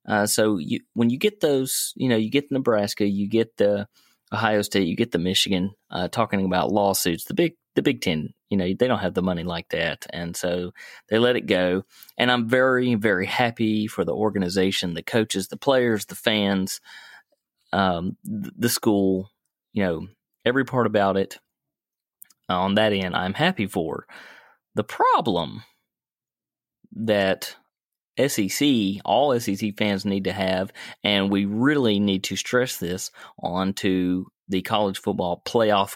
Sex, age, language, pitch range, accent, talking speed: male, 30-49, English, 95-115 Hz, American, 160 wpm